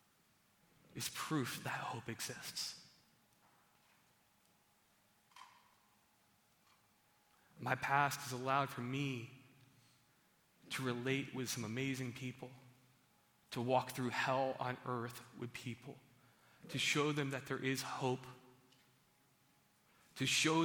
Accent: American